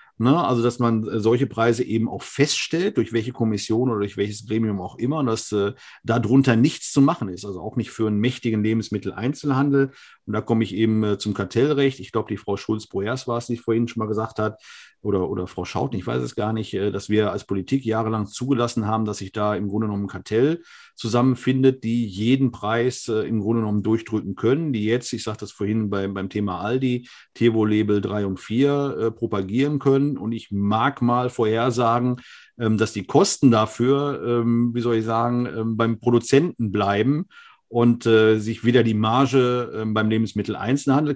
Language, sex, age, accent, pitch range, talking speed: German, male, 50-69, German, 105-125 Hz, 190 wpm